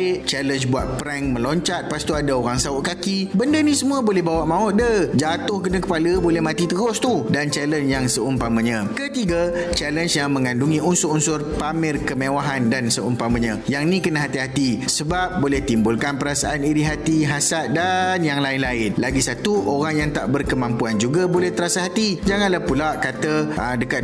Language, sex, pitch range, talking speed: Malay, male, 135-180 Hz, 160 wpm